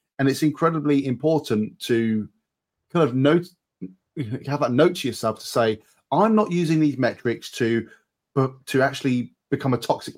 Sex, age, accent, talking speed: male, 30-49, British, 155 wpm